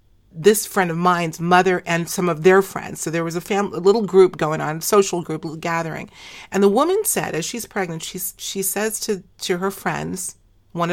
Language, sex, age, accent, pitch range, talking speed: English, female, 40-59, American, 155-195 Hz, 215 wpm